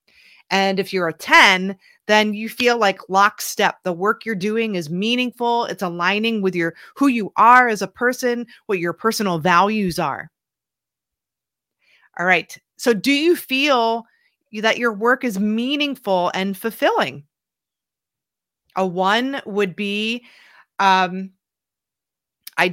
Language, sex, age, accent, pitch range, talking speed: English, female, 30-49, American, 190-230 Hz, 135 wpm